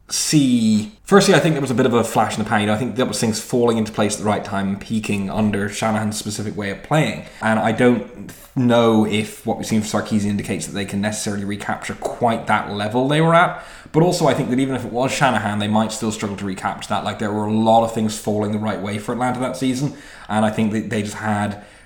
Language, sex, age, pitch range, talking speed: English, male, 20-39, 105-115 Hz, 265 wpm